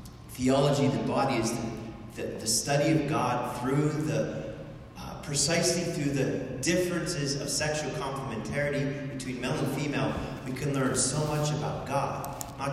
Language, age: English, 30-49